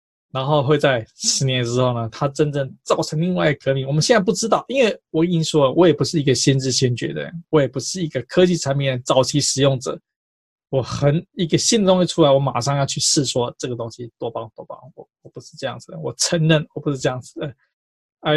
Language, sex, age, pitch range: Chinese, male, 20-39, 130-170 Hz